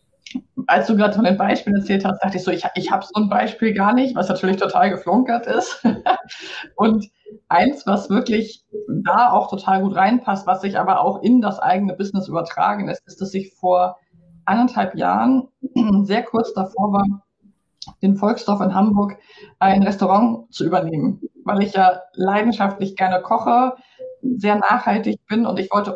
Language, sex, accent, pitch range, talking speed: German, female, German, 185-215 Hz, 170 wpm